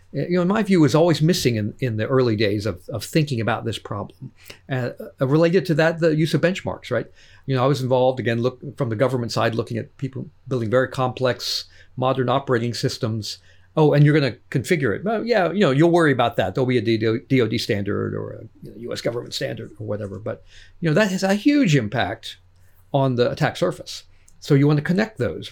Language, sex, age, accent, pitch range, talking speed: English, male, 50-69, American, 110-145 Hz, 225 wpm